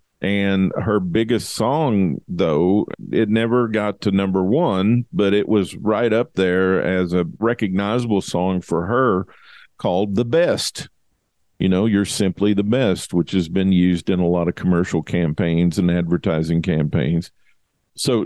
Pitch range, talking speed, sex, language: 95-110 Hz, 150 wpm, male, English